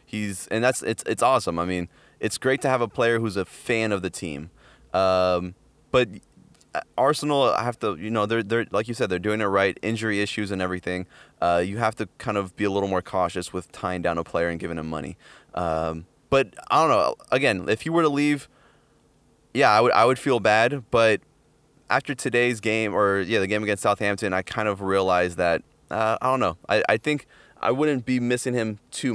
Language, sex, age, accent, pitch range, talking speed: English, male, 20-39, American, 95-120 Hz, 220 wpm